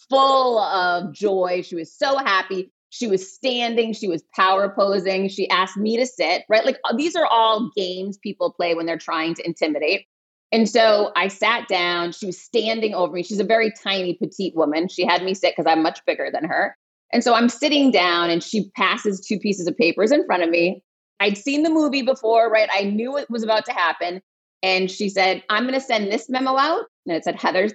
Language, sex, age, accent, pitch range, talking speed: English, female, 30-49, American, 180-235 Hz, 220 wpm